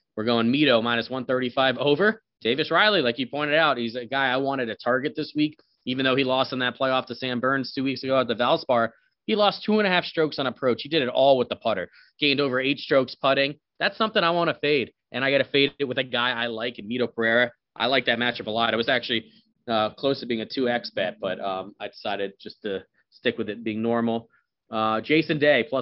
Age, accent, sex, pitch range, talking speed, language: 20-39, American, male, 115-130 Hz, 250 wpm, English